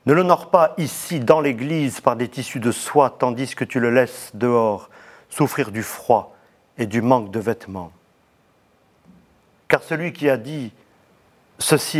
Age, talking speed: 40-59, 155 wpm